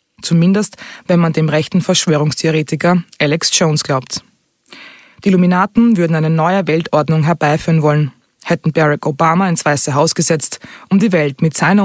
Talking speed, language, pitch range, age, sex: 145 wpm, German, 150-185 Hz, 20-39, female